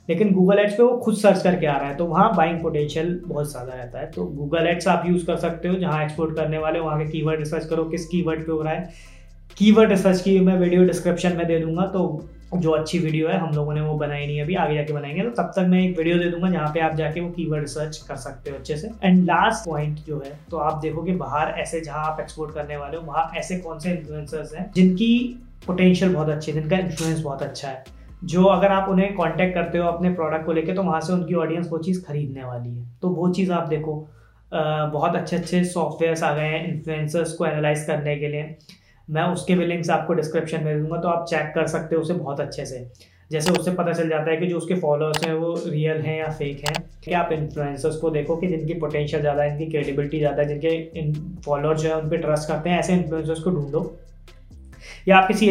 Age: 20-39